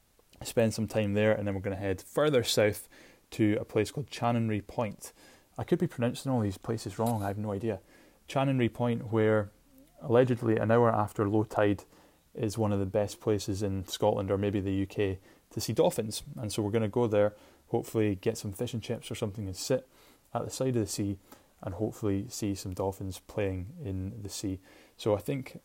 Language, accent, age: English, British, 20-39